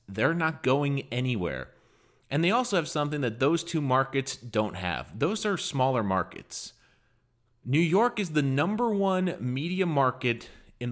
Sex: male